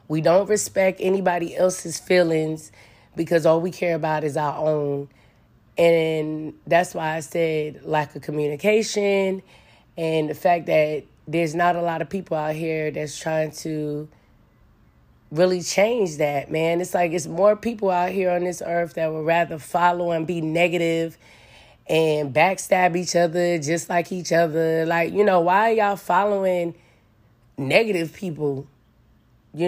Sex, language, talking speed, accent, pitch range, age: female, English, 155 wpm, American, 150-185 Hz, 20-39